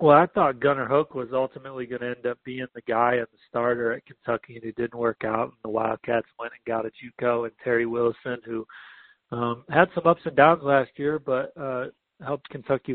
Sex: male